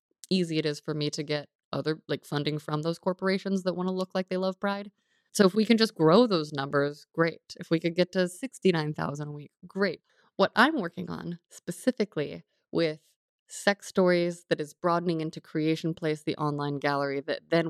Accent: American